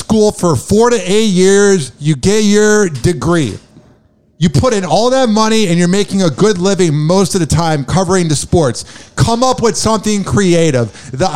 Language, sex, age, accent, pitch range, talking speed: English, male, 50-69, American, 175-240 Hz, 180 wpm